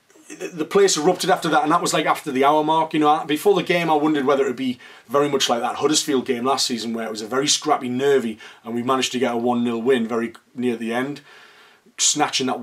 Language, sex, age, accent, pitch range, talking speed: English, male, 30-49, British, 125-155 Hz, 250 wpm